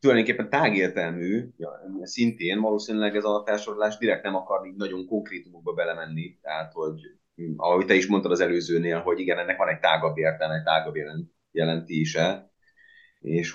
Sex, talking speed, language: male, 145 wpm, Hungarian